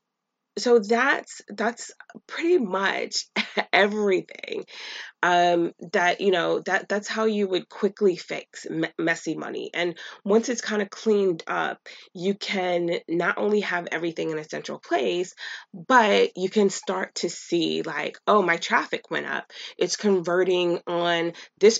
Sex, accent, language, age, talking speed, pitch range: female, American, English, 20-39, 145 wpm, 170-210 Hz